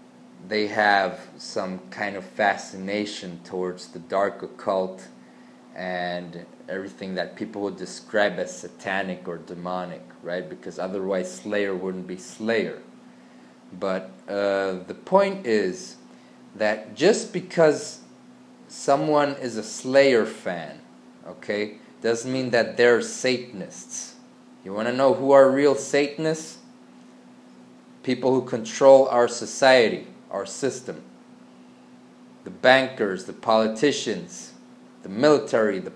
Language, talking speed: English, 110 wpm